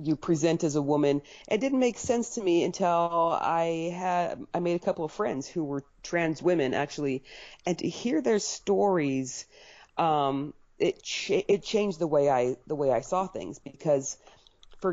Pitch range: 140-180 Hz